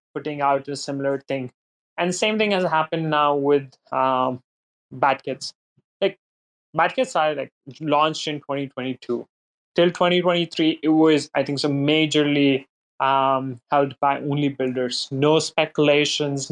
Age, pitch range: 20-39, 140-160 Hz